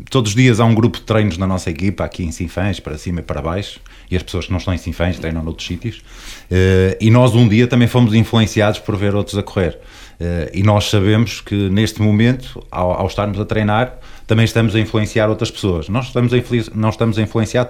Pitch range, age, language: 95-120 Hz, 20-39, Portuguese